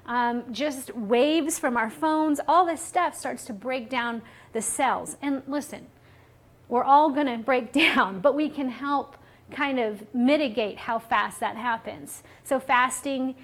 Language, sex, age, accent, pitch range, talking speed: English, female, 40-59, American, 235-290 Hz, 155 wpm